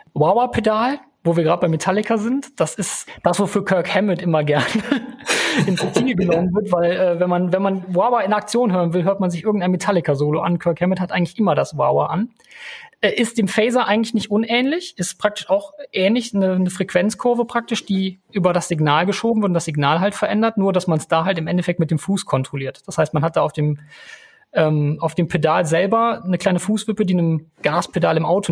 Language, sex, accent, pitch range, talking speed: German, male, German, 160-210 Hz, 210 wpm